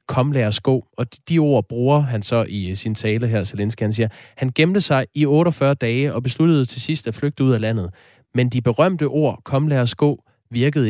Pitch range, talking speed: 110-140 Hz, 210 wpm